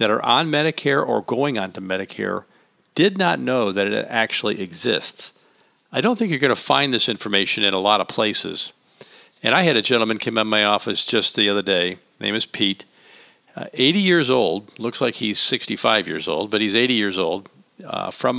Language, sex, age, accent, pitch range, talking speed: English, male, 50-69, American, 110-150 Hz, 200 wpm